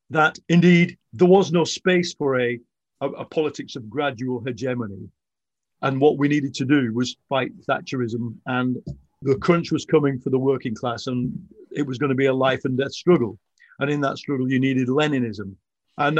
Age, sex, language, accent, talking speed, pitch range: 50-69, male, English, British, 190 wpm, 125-160 Hz